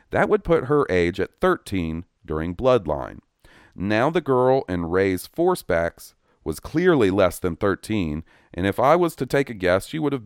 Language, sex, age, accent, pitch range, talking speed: English, male, 40-59, American, 85-130 Hz, 180 wpm